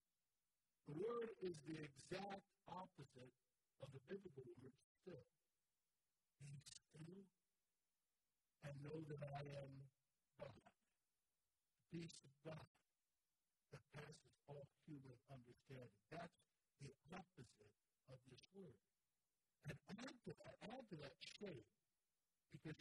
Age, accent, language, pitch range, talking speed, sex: 50-69, American, English, 140-195 Hz, 110 wpm, male